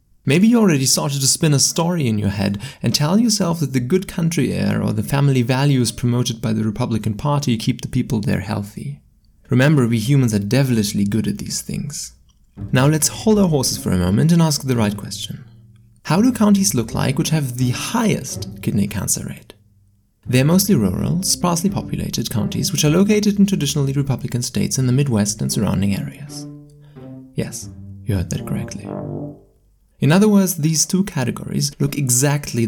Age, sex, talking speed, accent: 30-49, male, 185 wpm, German